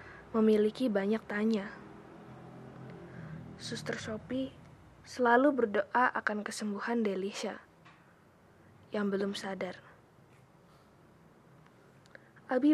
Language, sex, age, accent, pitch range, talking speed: Indonesian, female, 20-39, native, 205-240 Hz, 65 wpm